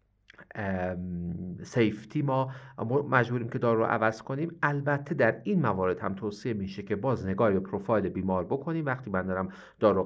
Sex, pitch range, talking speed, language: male, 90-115 Hz, 155 wpm, Persian